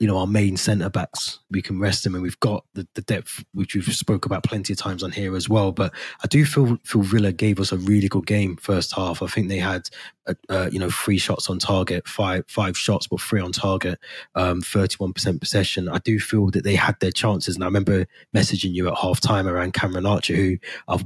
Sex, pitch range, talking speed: male, 95-105 Hz, 235 wpm